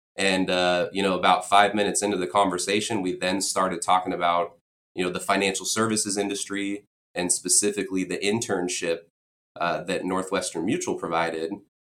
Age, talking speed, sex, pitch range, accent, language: 20-39, 150 wpm, male, 90-105 Hz, American, English